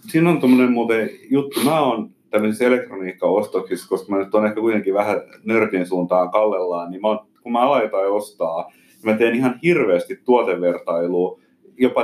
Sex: male